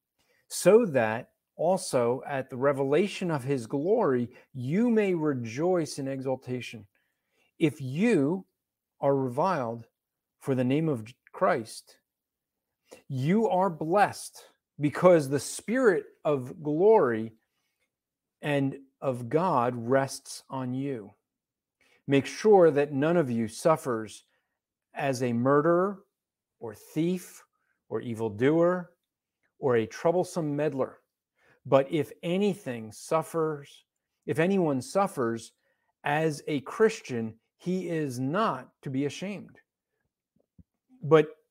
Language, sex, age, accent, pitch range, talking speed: English, male, 50-69, American, 130-180 Hz, 105 wpm